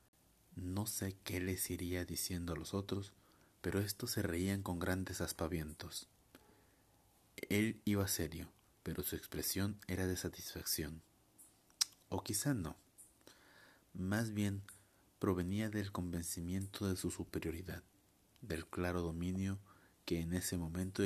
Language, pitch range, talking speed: Spanish, 85-100 Hz, 125 wpm